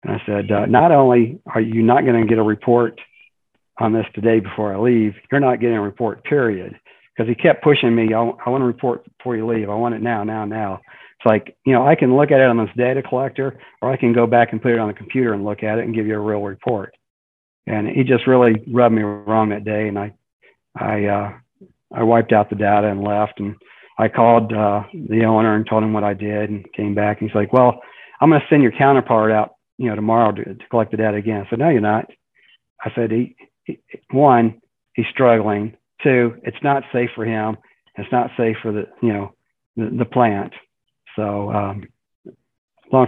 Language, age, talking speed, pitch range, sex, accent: English, 50-69, 225 wpm, 105-125 Hz, male, American